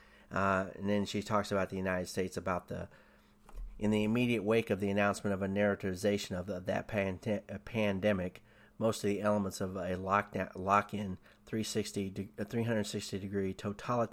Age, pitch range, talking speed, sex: 40-59, 95-105 Hz, 160 wpm, male